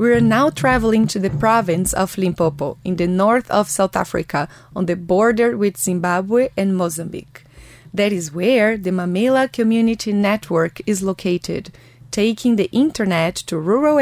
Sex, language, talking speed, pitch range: female, English, 155 wpm, 180-230 Hz